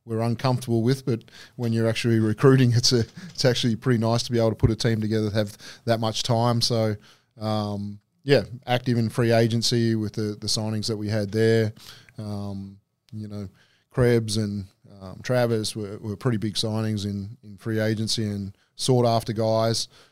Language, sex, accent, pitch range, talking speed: English, male, Australian, 110-120 Hz, 185 wpm